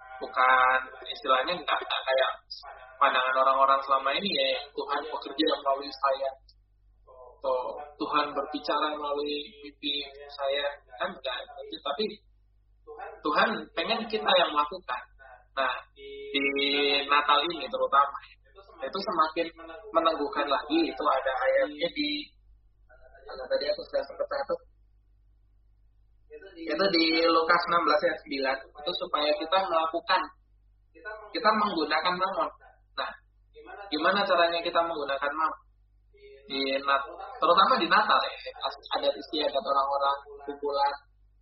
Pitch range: 135-185 Hz